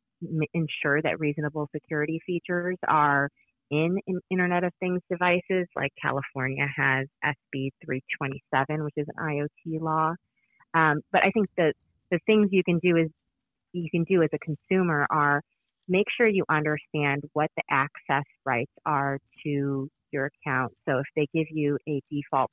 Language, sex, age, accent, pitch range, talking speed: English, female, 30-49, American, 135-160 Hz, 155 wpm